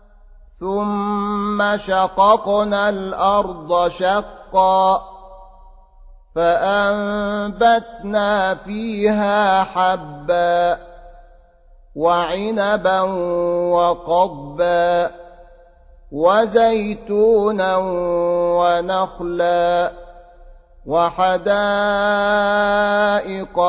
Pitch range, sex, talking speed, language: 175-205 Hz, male, 30 wpm, Arabic